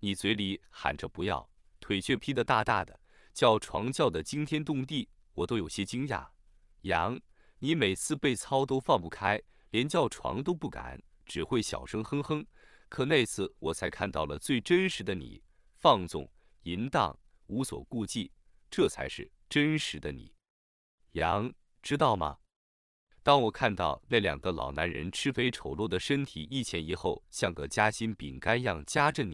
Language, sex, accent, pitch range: English, male, Chinese, 90-140 Hz